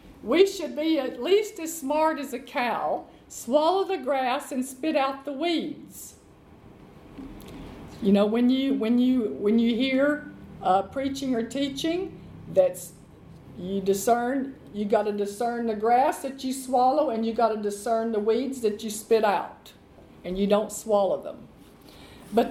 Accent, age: American, 50-69